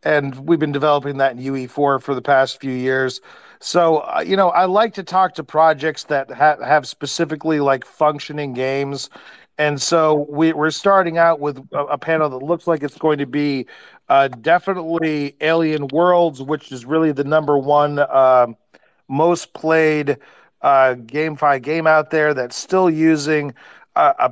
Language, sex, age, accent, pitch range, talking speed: English, male, 40-59, American, 130-155 Hz, 165 wpm